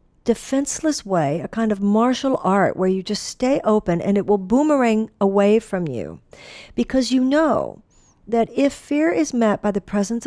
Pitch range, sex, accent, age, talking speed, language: 200-250 Hz, female, American, 50-69, 175 wpm, English